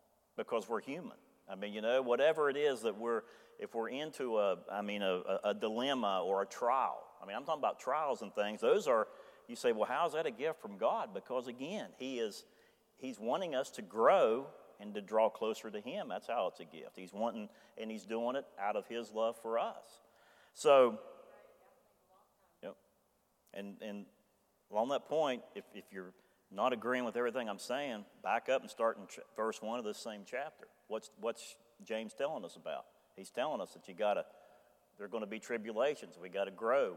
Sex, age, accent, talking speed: male, 40-59, American, 200 wpm